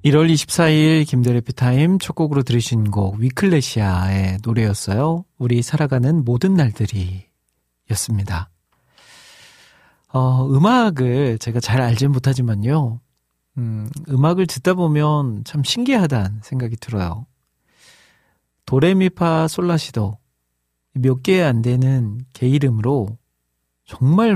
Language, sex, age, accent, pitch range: Korean, male, 40-59, native, 110-145 Hz